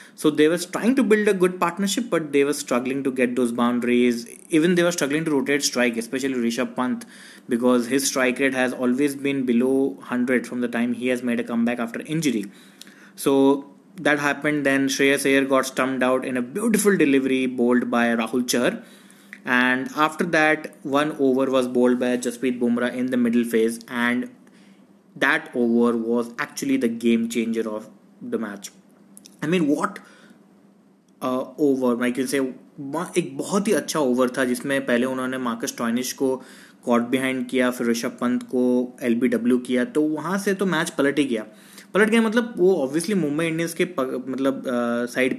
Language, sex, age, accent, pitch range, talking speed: English, male, 20-39, Indian, 125-165 Hz, 165 wpm